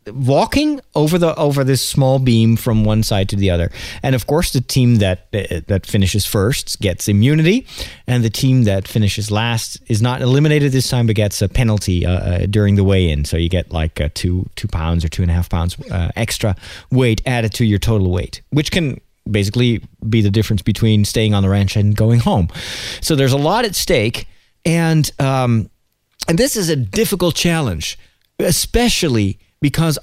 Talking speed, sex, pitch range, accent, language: 195 wpm, male, 105-165 Hz, American, English